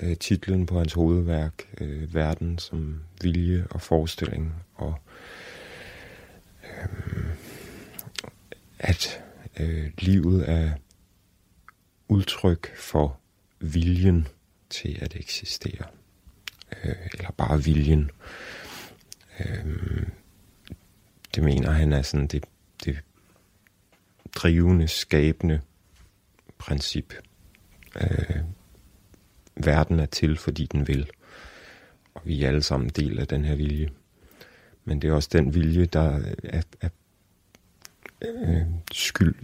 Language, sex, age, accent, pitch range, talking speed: Danish, male, 30-49, native, 75-95 Hz, 95 wpm